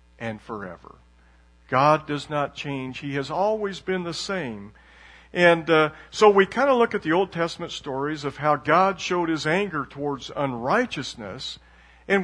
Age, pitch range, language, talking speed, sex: 50-69, 125-185 Hz, English, 160 wpm, male